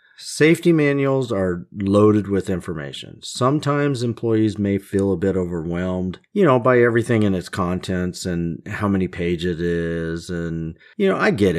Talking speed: 160 wpm